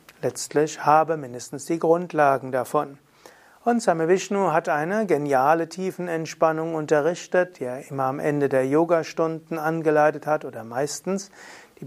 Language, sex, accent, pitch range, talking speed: German, male, German, 145-185 Hz, 130 wpm